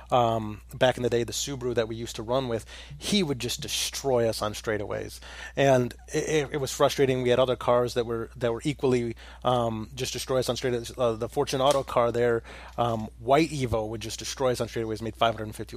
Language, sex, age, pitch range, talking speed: English, male, 30-49, 115-135 Hz, 215 wpm